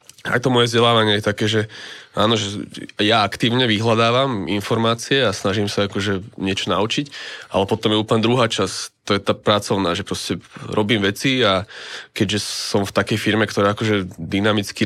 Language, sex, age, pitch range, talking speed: Slovak, male, 20-39, 100-115 Hz, 170 wpm